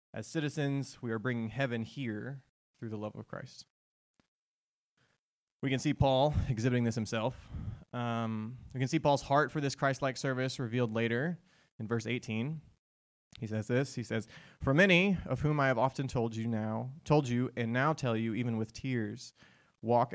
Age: 20-39